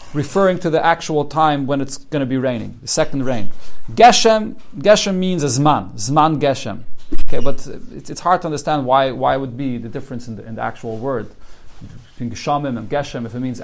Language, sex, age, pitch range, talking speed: English, male, 40-59, 135-175 Hz, 195 wpm